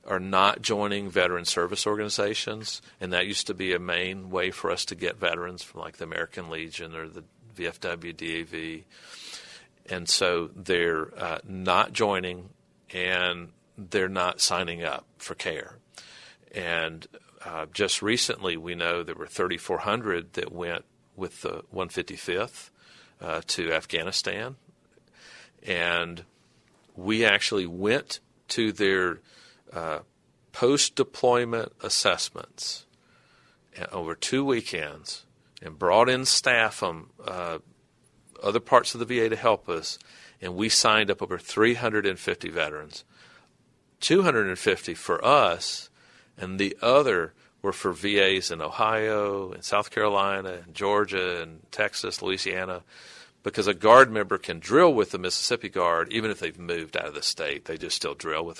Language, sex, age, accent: English, male, 50-69, American